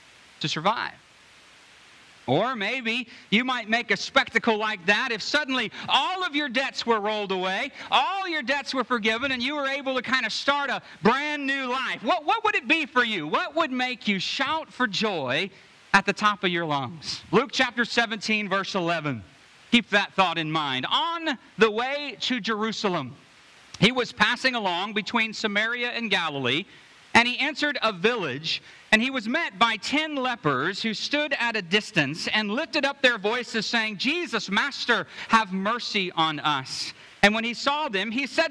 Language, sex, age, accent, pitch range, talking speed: English, male, 40-59, American, 205-265 Hz, 180 wpm